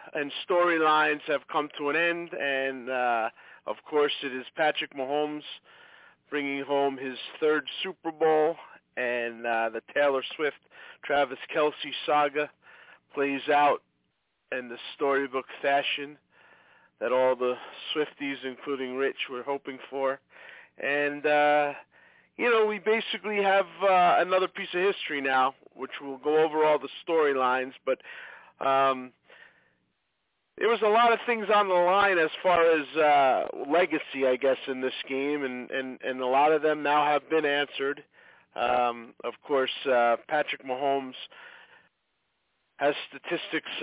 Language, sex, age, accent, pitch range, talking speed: English, male, 40-59, American, 135-160 Hz, 140 wpm